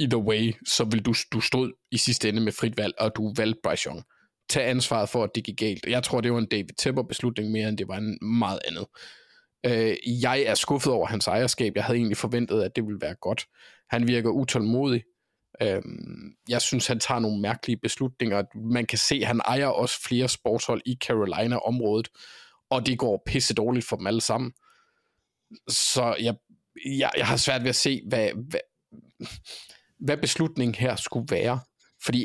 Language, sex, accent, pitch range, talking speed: Danish, male, native, 110-125 Hz, 190 wpm